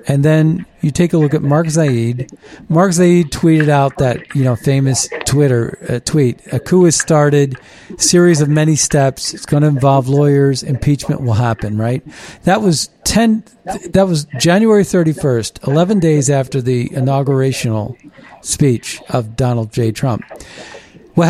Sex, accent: male, American